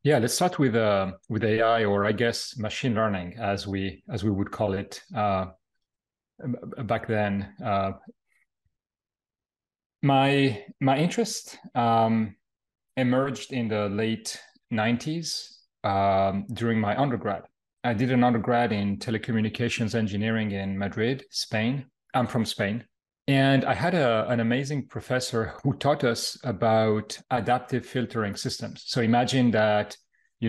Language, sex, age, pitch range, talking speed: English, male, 30-49, 105-120 Hz, 130 wpm